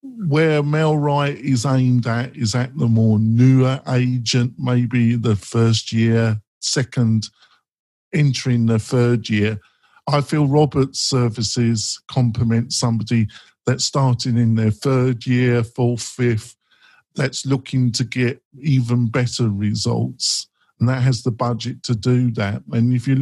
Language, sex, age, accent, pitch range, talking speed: English, male, 50-69, British, 115-135 Hz, 135 wpm